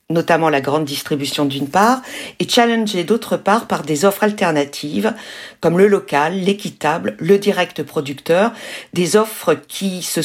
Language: French